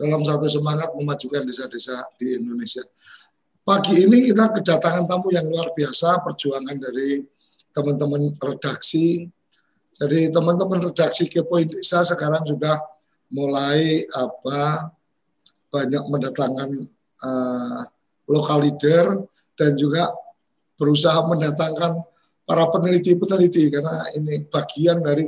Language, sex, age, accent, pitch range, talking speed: Indonesian, male, 50-69, native, 140-170 Hz, 100 wpm